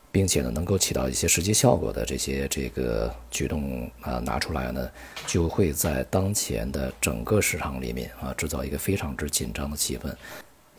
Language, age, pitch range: Chinese, 50-69, 70-95 Hz